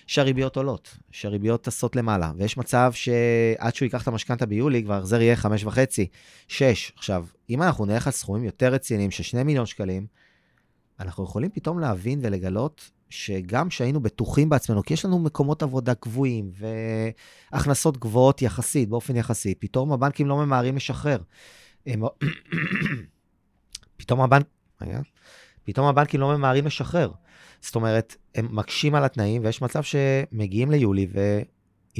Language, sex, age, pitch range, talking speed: Hebrew, male, 30-49, 105-140 Hz, 135 wpm